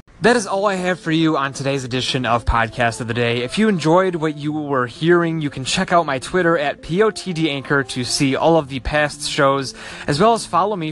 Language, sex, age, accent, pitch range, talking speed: English, male, 20-39, American, 120-165 Hz, 235 wpm